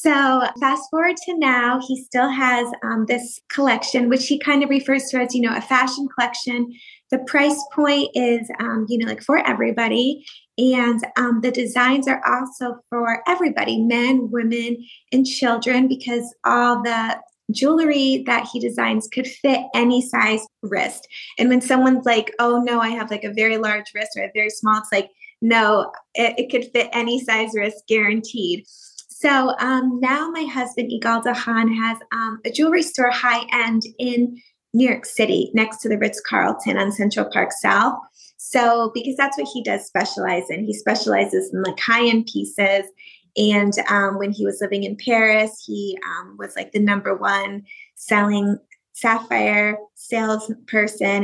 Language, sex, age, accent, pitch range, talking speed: English, female, 20-39, American, 215-255 Hz, 170 wpm